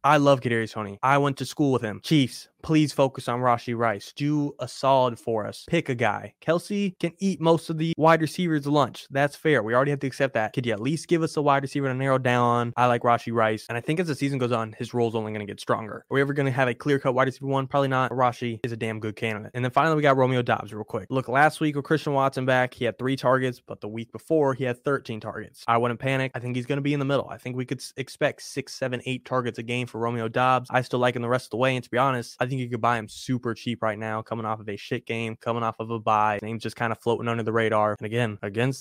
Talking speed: 295 wpm